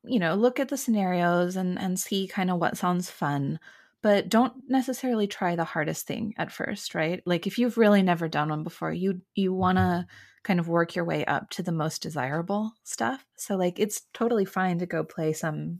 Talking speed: 215 wpm